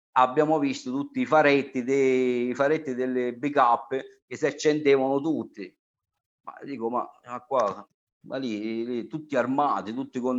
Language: Italian